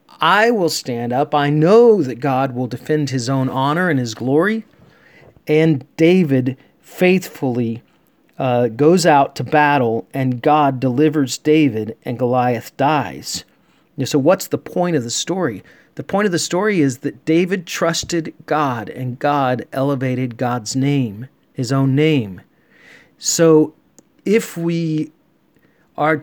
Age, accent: 40-59, American